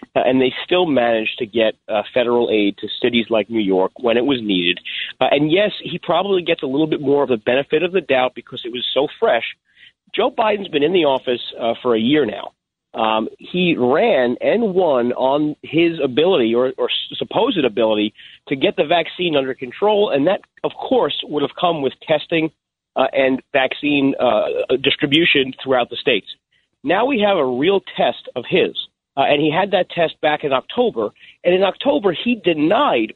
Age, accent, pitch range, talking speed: 40-59, American, 125-175 Hz, 195 wpm